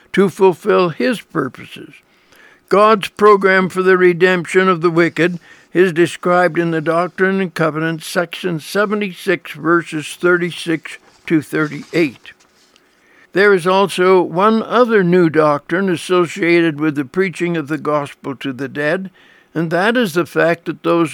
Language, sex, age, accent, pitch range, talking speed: English, male, 60-79, American, 165-195 Hz, 140 wpm